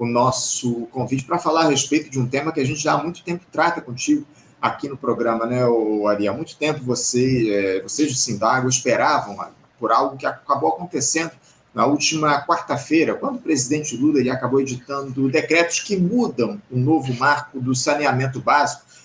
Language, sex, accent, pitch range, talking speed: Portuguese, male, Brazilian, 125-165 Hz, 180 wpm